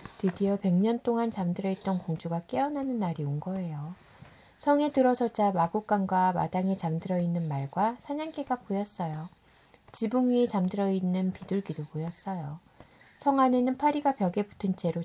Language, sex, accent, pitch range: Korean, female, native, 170-220 Hz